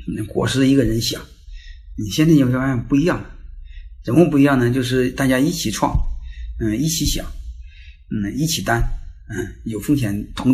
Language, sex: Chinese, male